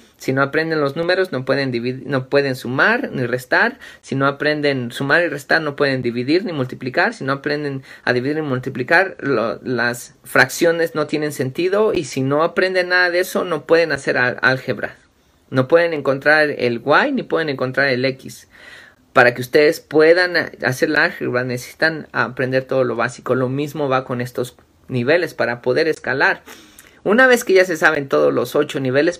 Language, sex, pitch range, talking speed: Spanish, male, 125-155 Hz, 185 wpm